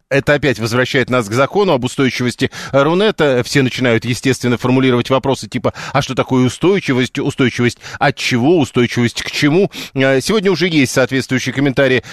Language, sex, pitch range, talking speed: Russian, male, 120-150 Hz, 150 wpm